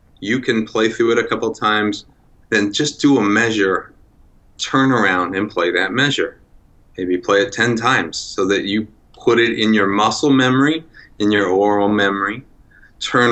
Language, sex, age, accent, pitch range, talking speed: English, male, 30-49, American, 100-125 Hz, 170 wpm